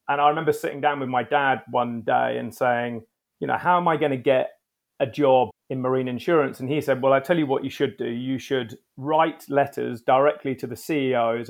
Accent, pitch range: British, 125-145 Hz